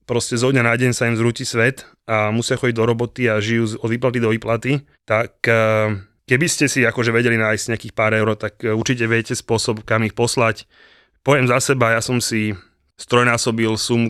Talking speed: 190 wpm